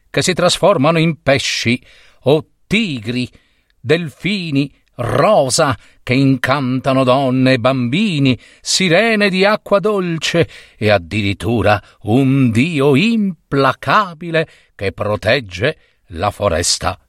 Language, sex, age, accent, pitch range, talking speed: Italian, male, 50-69, native, 120-195 Hz, 90 wpm